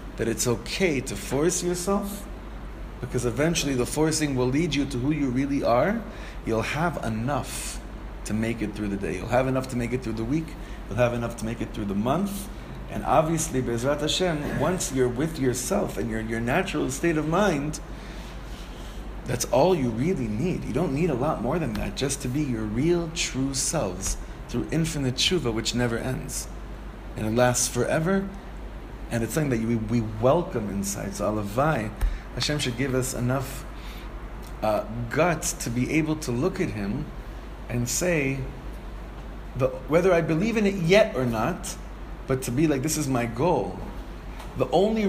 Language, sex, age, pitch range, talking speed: English, male, 30-49, 115-160 Hz, 180 wpm